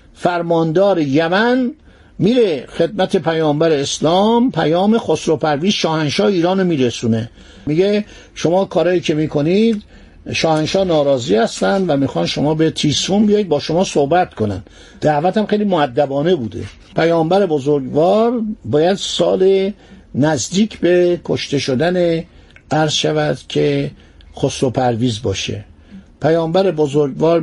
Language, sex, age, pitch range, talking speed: Persian, male, 50-69, 140-190 Hz, 110 wpm